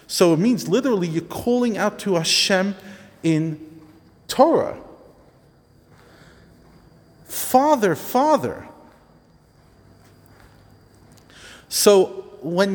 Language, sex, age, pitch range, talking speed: English, male, 40-59, 130-190 Hz, 70 wpm